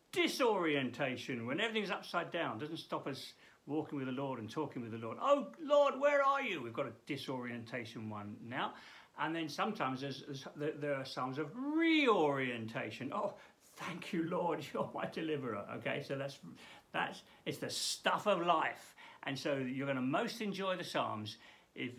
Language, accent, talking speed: English, British, 175 wpm